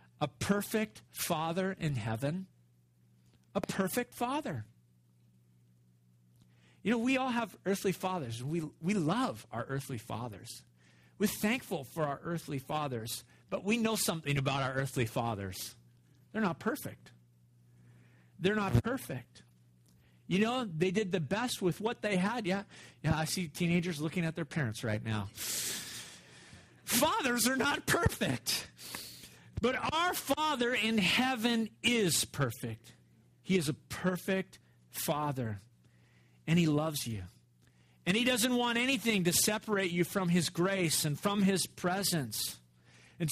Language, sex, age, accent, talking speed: English, male, 50-69, American, 140 wpm